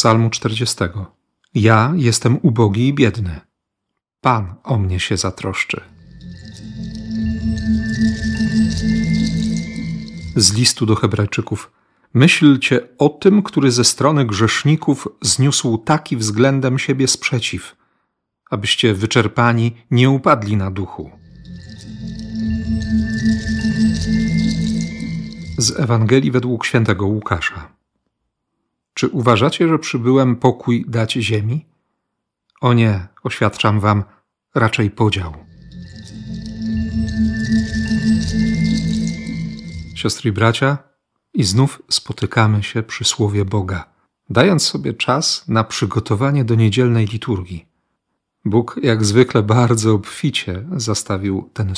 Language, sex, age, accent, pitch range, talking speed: Polish, male, 40-59, native, 105-125 Hz, 90 wpm